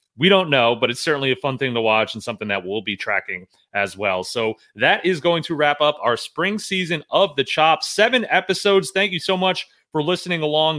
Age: 30-49